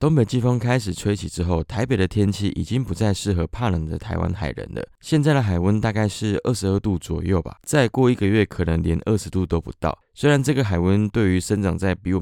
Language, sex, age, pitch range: Chinese, male, 20-39, 90-115 Hz